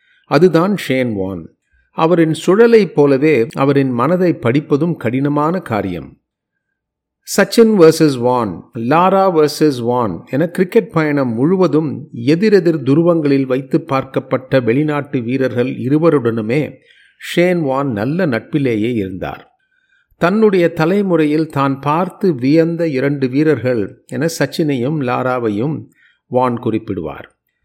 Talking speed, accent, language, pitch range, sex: 100 wpm, native, Tamil, 125-170 Hz, male